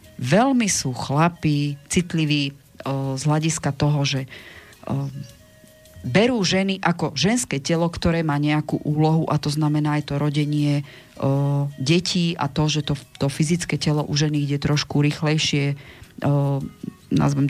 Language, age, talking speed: Slovak, 40-59, 135 wpm